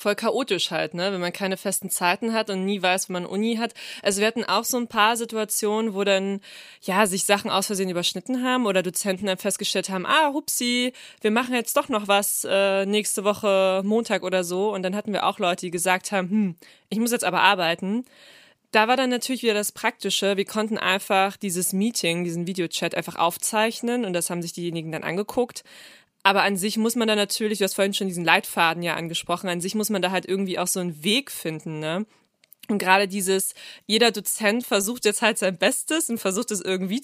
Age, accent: 20-39, German